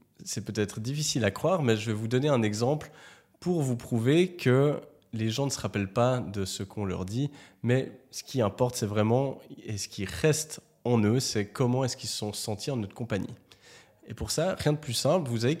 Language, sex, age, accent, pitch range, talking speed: French, male, 20-39, French, 100-130 Hz, 225 wpm